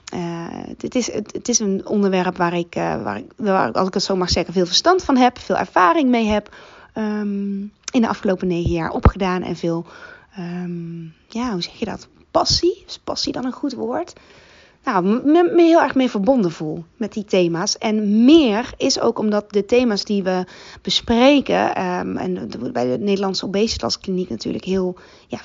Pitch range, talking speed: 195-240 Hz, 205 wpm